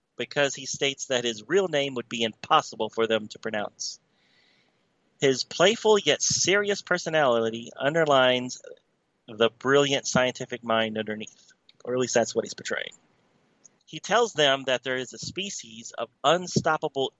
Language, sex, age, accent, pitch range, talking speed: English, male, 30-49, American, 120-155 Hz, 145 wpm